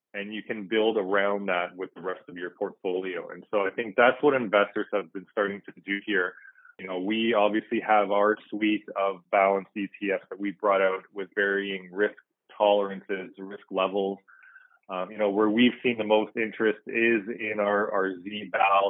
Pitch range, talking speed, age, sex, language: 100-125 Hz, 185 wpm, 20-39, male, English